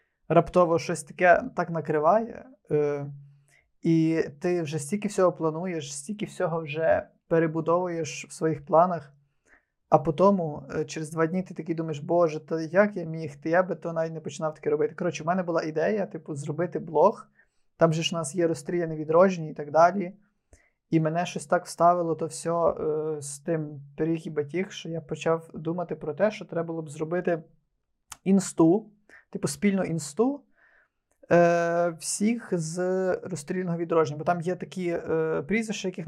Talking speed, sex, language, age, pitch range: 155 wpm, male, Ukrainian, 20-39, 160-180 Hz